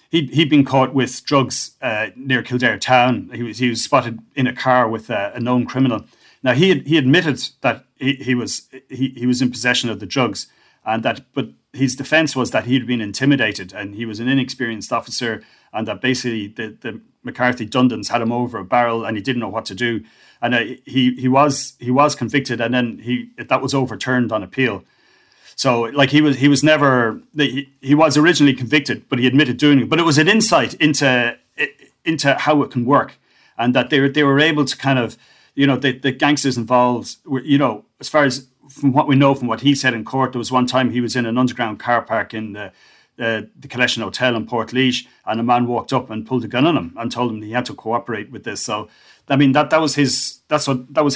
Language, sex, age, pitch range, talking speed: English, male, 30-49, 120-140 Hz, 240 wpm